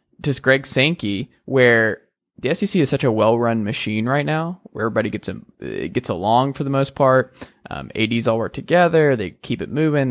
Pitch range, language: 110-135 Hz, English